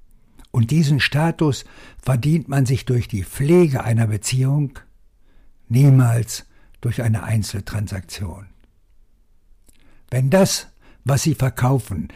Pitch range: 95-125 Hz